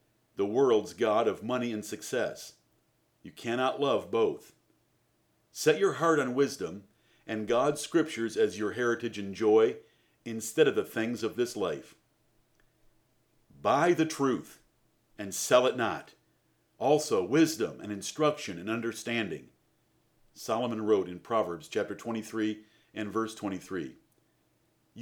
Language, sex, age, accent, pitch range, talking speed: English, male, 50-69, American, 110-145 Hz, 125 wpm